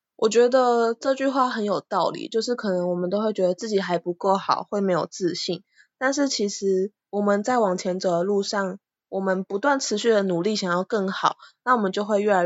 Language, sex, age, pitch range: Chinese, female, 20-39, 180-215 Hz